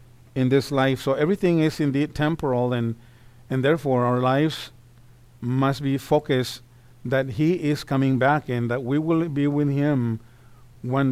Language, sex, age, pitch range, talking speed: English, male, 50-69, 120-145 Hz, 155 wpm